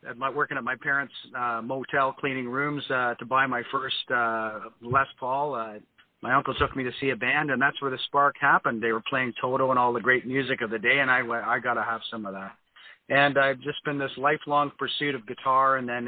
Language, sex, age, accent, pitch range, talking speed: English, male, 40-59, American, 115-135 Hz, 230 wpm